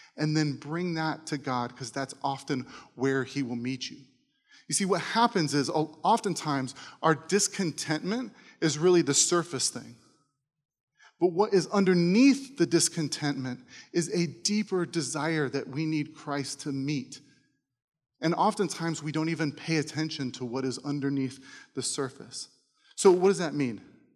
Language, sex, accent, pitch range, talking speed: English, male, American, 140-170 Hz, 150 wpm